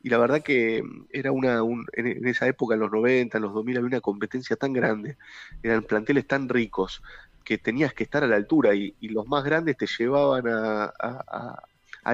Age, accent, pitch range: 20-39, Argentinian, 110-135 Hz